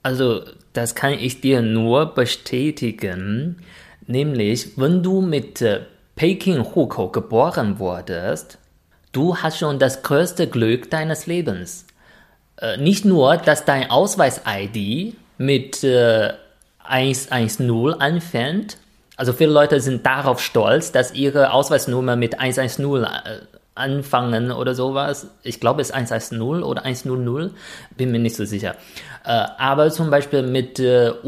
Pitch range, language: 115-150 Hz, German